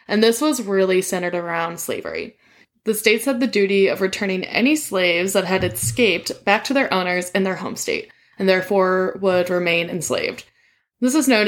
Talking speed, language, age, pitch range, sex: 185 wpm, English, 10-29, 185-235 Hz, female